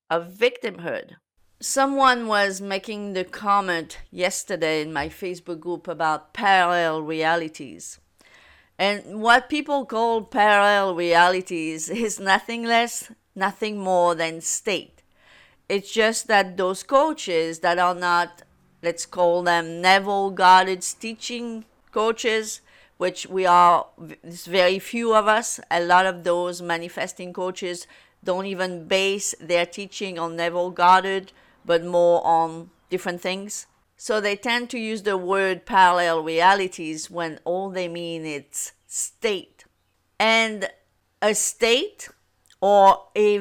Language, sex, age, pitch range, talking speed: English, female, 50-69, 175-220 Hz, 125 wpm